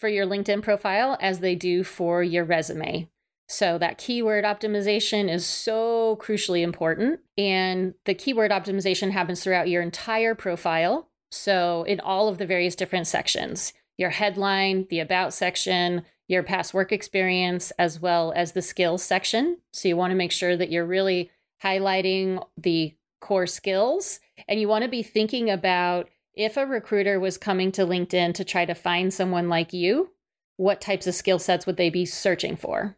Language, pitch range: English, 175-205 Hz